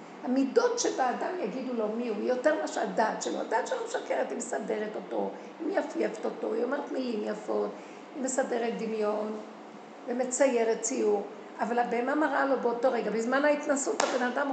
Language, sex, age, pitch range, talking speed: Hebrew, female, 50-69, 225-275 Hz, 160 wpm